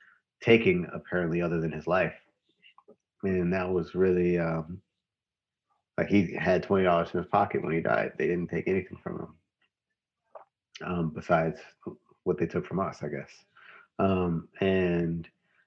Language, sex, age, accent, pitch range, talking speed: English, male, 30-49, American, 85-95 Hz, 150 wpm